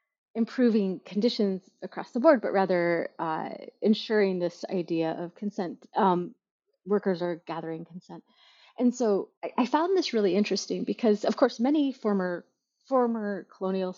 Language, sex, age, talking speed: English, female, 30-49, 140 wpm